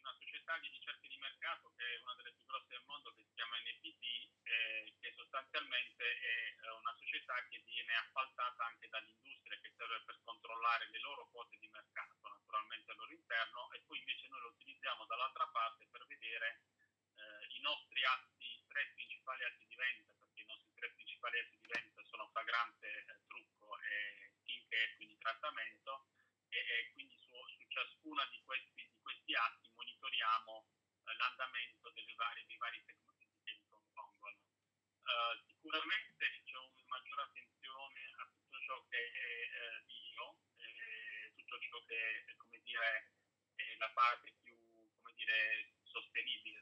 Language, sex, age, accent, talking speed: Italian, male, 30-49, native, 160 wpm